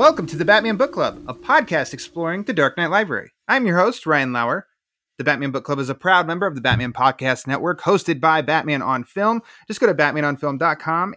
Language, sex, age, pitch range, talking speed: English, male, 30-49, 125-175 Hz, 215 wpm